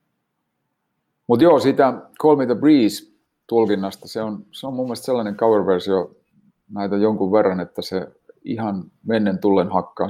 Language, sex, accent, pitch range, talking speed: Finnish, male, native, 95-105 Hz, 145 wpm